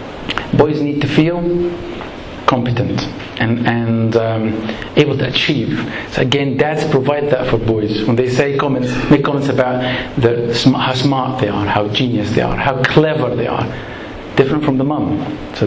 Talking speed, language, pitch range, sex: 165 wpm, English, 120-150 Hz, male